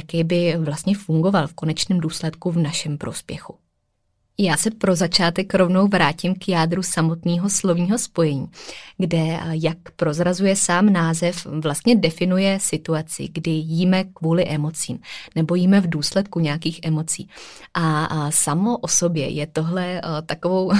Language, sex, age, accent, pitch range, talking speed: Czech, female, 20-39, native, 160-190 Hz, 135 wpm